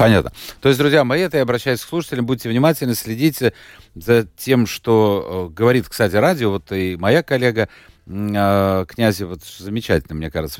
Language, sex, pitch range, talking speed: Russian, male, 95-125 Hz, 160 wpm